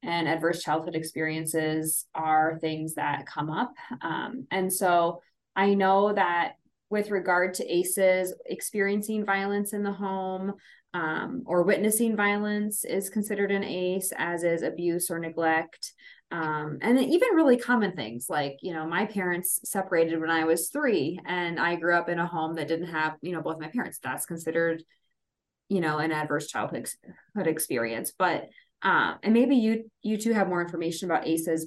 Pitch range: 170-215 Hz